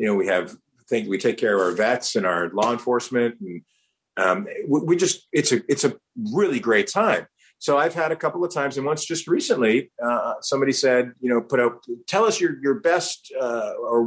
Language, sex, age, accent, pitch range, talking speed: English, male, 40-59, American, 115-150 Hz, 220 wpm